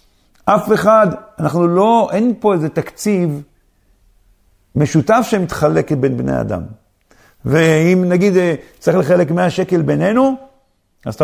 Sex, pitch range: male, 160-220 Hz